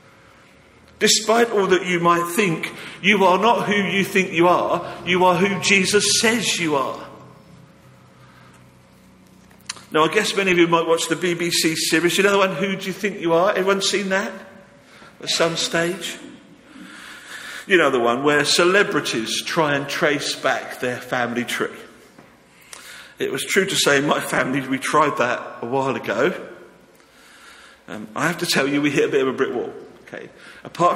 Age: 50-69